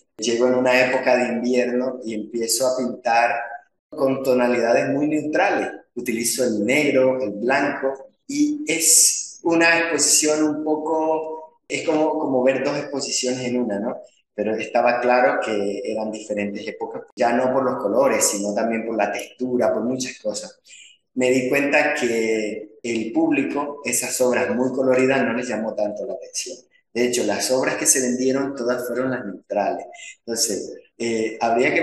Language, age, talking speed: Spanish, 30-49, 160 wpm